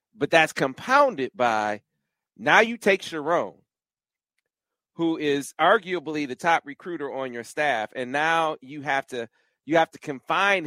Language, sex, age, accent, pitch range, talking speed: English, male, 40-59, American, 145-200 Hz, 145 wpm